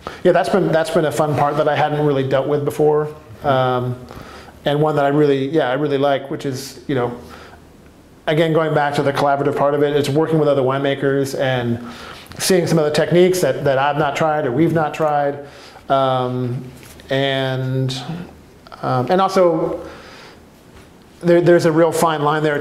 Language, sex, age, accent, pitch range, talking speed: English, male, 40-59, American, 135-155 Hz, 185 wpm